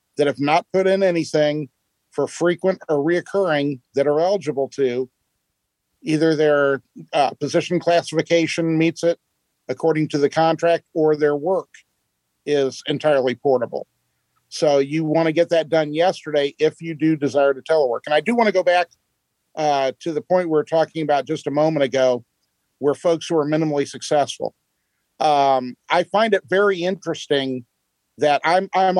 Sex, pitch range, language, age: male, 145-165 Hz, English, 50-69